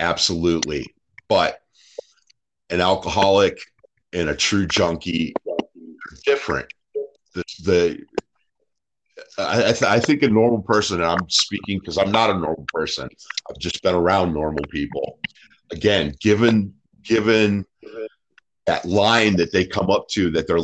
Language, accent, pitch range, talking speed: English, American, 80-110 Hz, 125 wpm